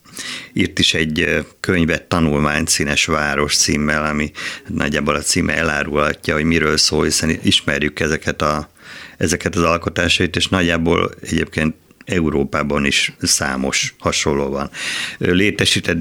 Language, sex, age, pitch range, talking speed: Hungarian, male, 50-69, 75-95 Hz, 120 wpm